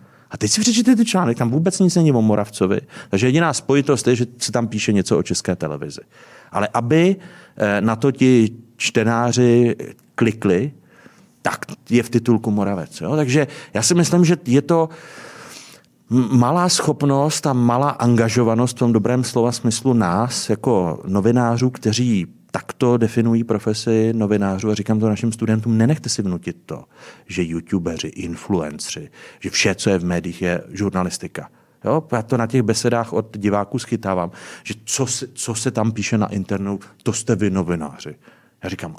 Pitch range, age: 100-125 Hz, 40-59